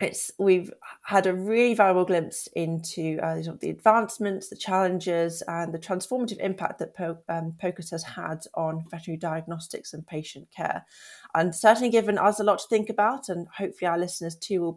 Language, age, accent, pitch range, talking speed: English, 30-49, British, 165-210 Hz, 170 wpm